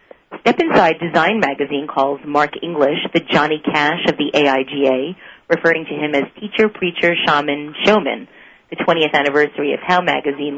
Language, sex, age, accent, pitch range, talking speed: English, female, 30-49, American, 145-170 Hz, 155 wpm